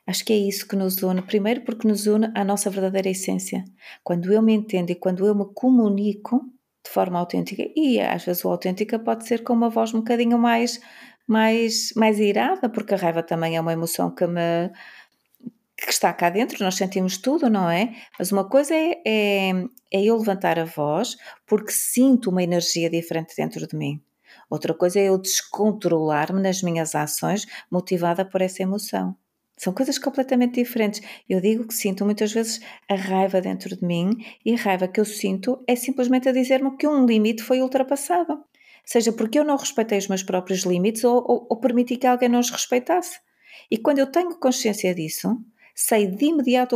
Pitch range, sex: 190-245 Hz, female